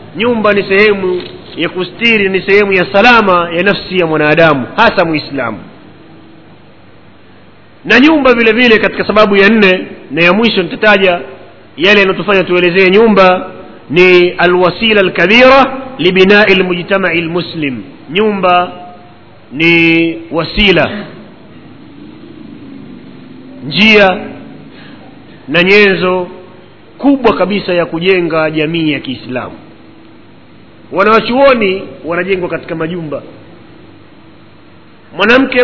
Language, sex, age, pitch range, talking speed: Swahili, male, 40-59, 175-225 Hz, 95 wpm